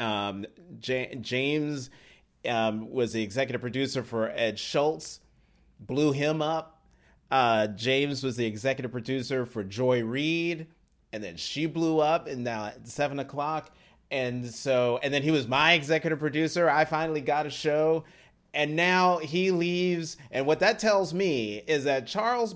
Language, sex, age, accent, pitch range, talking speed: English, male, 30-49, American, 130-170 Hz, 155 wpm